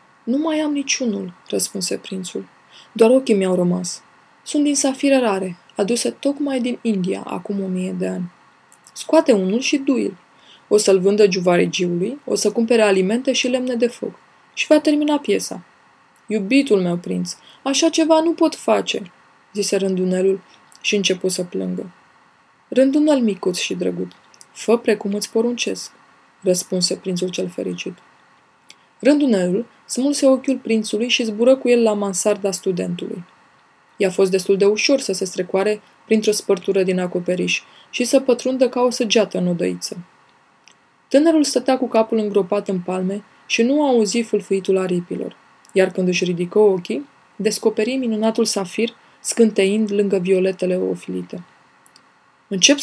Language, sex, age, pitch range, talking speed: Romanian, female, 20-39, 190-255 Hz, 145 wpm